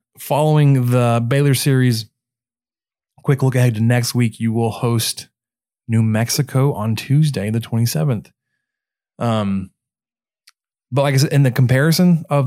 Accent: American